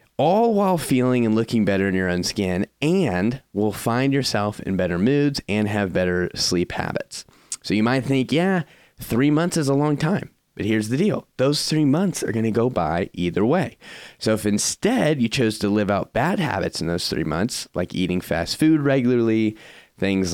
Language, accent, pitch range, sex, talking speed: English, American, 95-135 Hz, male, 195 wpm